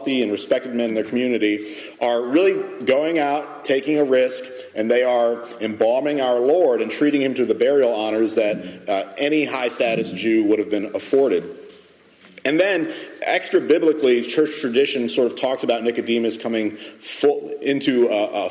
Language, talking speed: English, 170 wpm